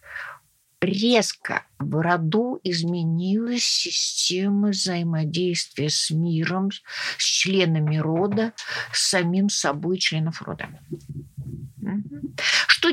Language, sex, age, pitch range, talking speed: Russian, female, 50-69, 155-205 Hz, 80 wpm